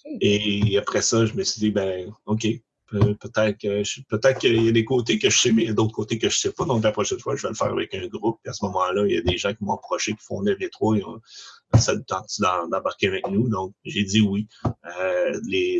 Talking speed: 265 wpm